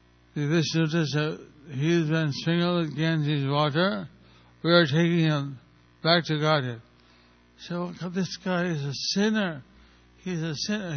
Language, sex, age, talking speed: English, male, 60-79, 140 wpm